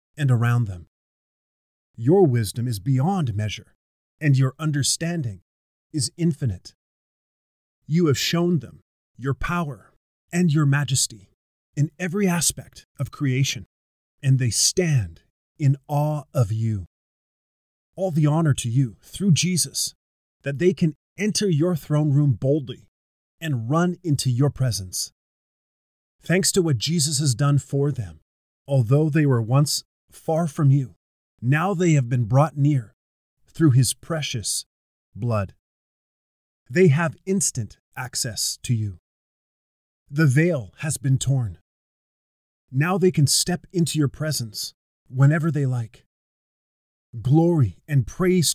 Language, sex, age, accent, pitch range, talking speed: English, male, 30-49, American, 100-155 Hz, 125 wpm